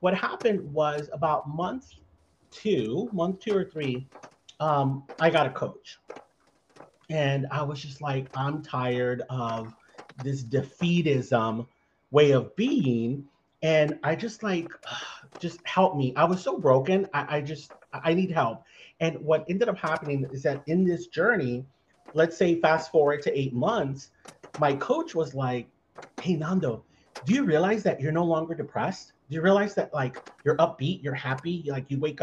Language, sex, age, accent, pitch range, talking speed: English, male, 40-59, American, 140-180 Hz, 165 wpm